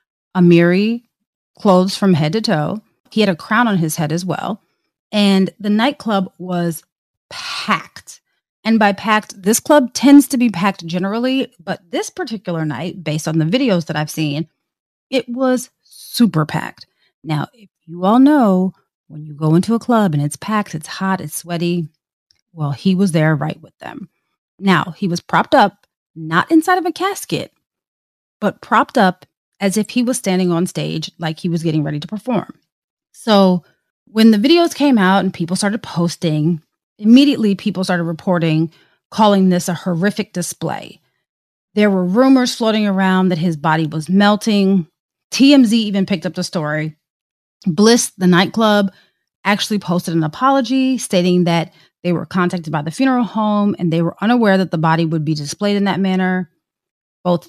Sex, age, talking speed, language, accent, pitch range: female, 30-49, 170 wpm, English, American, 170-220 Hz